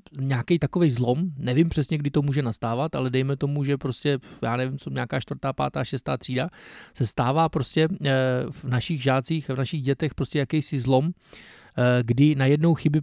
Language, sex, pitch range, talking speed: Czech, male, 130-155 Hz, 165 wpm